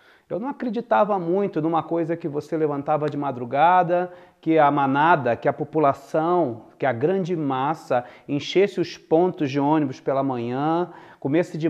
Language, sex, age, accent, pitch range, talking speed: Portuguese, male, 40-59, Brazilian, 145-185 Hz, 155 wpm